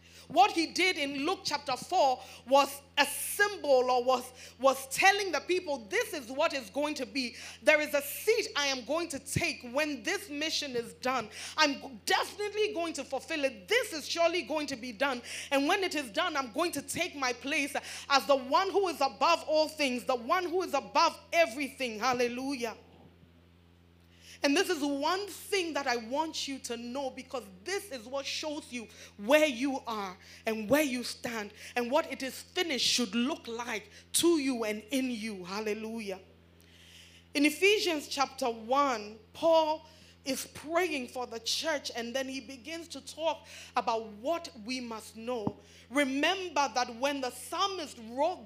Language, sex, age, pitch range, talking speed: English, female, 30-49, 250-325 Hz, 175 wpm